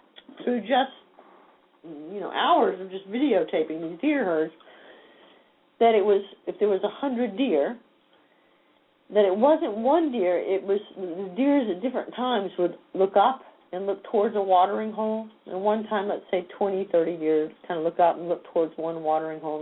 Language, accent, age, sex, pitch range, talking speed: English, American, 50-69, female, 180-270 Hz, 175 wpm